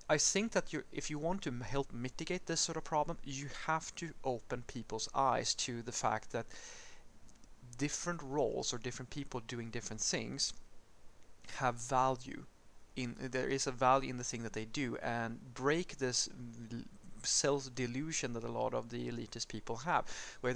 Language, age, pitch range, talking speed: English, 30-49, 115-140 Hz, 170 wpm